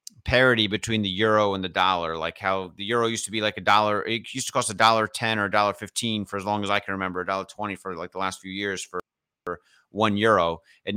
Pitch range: 90-110 Hz